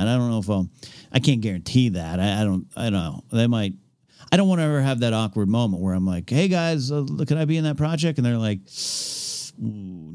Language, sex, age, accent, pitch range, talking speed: English, male, 50-69, American, 105-145 Hz, 265 wpm